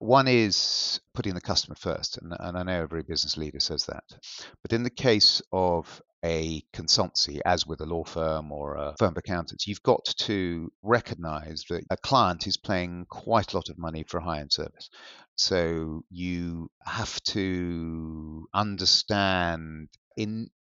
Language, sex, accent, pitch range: English, male, British, 80-95 Hz